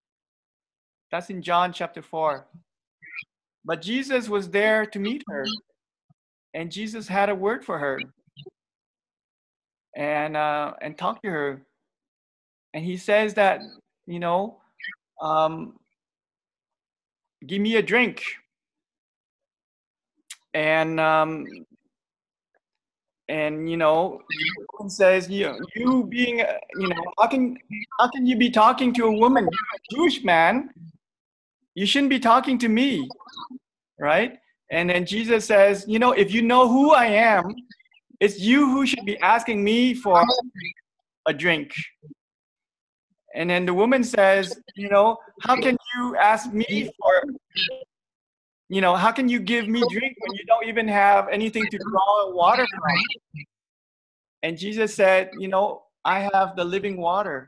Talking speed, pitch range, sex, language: 135 wpm, 175-240 Hz, male, English